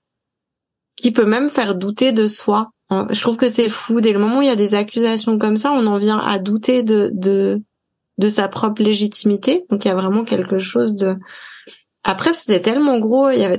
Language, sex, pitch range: French, female, 205-235 Hz